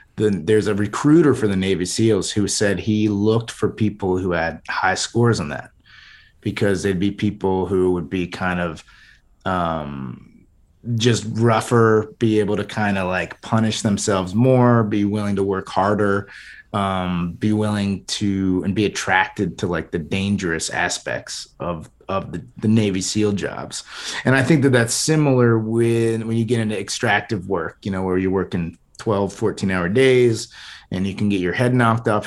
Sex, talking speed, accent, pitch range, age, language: male, 180 wpm, American, 95-115 Hz, 30-49, English